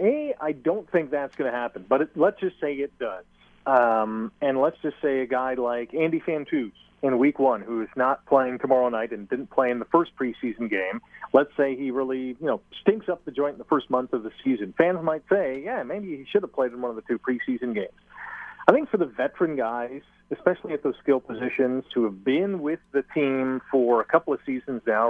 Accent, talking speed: American, 230 wpm